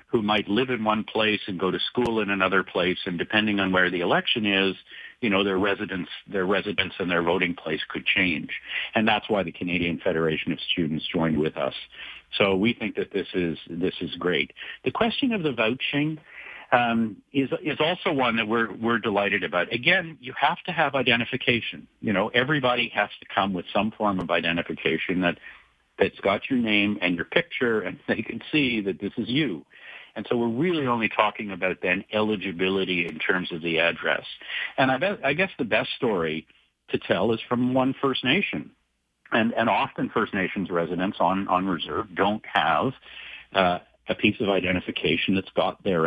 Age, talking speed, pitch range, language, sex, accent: 50-69, 195 wpm, 90-120 Hz, English, male, American